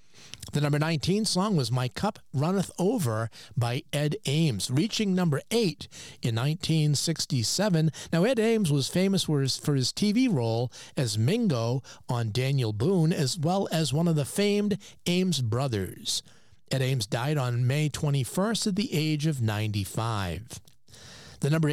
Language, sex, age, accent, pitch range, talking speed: English, male, 50-69, American, 125-180 Hz, 150 wpm